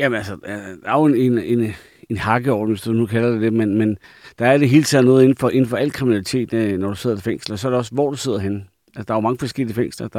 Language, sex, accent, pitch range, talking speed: Danish, male, native, 105-130 Hz, 300 wpm